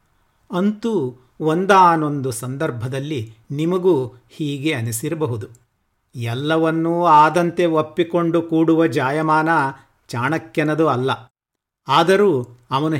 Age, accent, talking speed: 50-69, native, 70 wpm